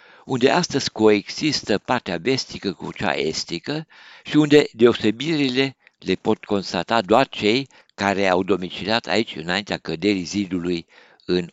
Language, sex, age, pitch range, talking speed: Romanian, male, 60-79, 90-120 Hz, 125 wpm